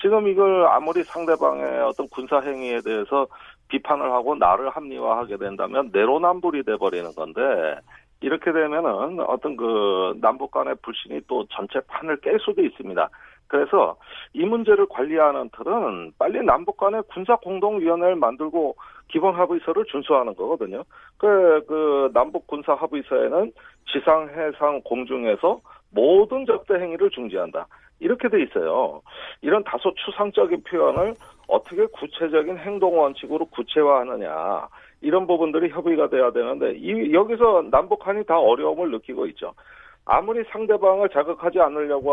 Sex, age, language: male, 40-59, Korean